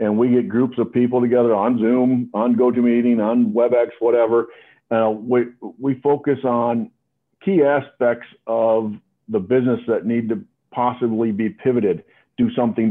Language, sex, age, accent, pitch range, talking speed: English, male, 50-69, American, 115-140 Hz, 150 wpm